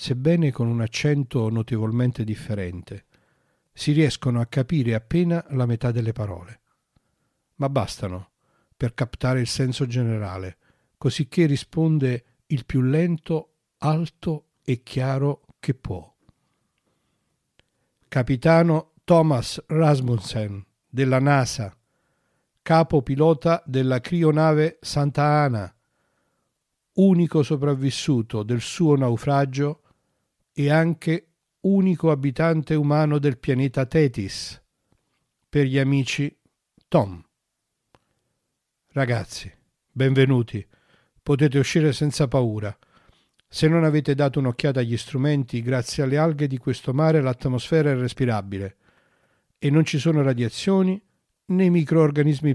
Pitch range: 120-155 Hz